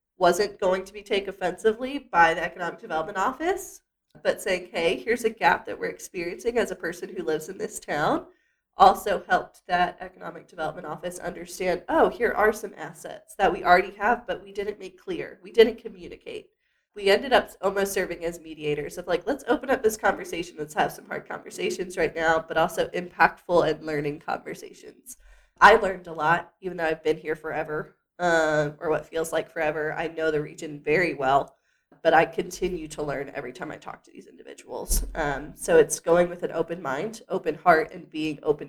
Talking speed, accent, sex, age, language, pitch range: 195 wpm, American, female, 20-39, English, 165-235 Hz